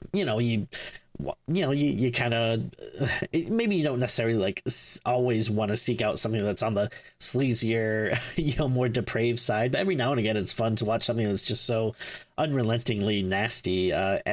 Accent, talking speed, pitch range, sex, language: American, 190 wpm, 110-135 Hz, male, English